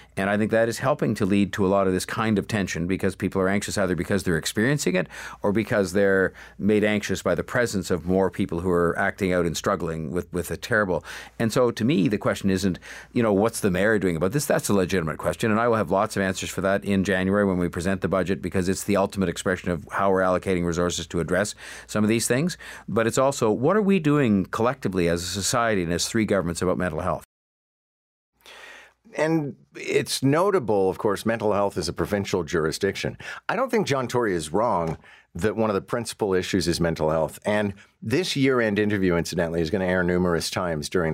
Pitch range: 90-105 Hz